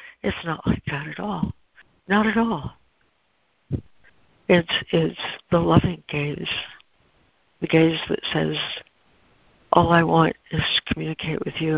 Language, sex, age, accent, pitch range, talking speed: English, female, 60-79, American, 145-180 Hz, 130 wpm